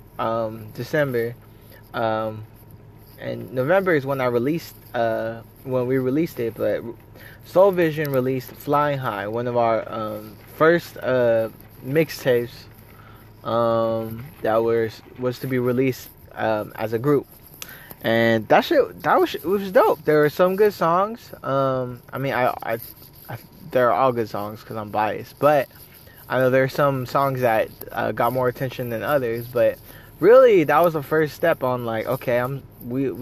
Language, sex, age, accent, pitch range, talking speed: English, male, 20-39, American, 115-150 Hz, 165 wpm